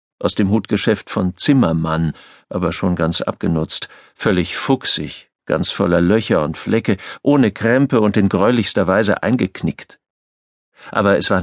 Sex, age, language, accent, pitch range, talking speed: male, 50-69, German, German, 80-100 Hz, 135 wpm